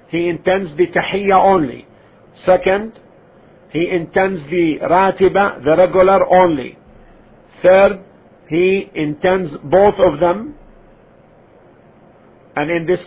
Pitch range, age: 155-190 Hz, 50-69